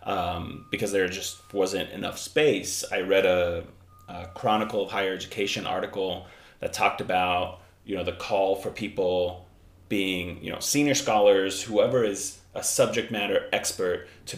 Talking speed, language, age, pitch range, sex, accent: 155 wpm, English, 30-49, 90-115 Hz, male, American